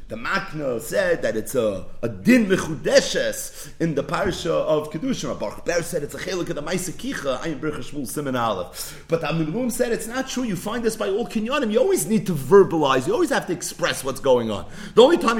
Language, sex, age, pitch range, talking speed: English, male, 40-59, 170-245 Hz, 205 wpm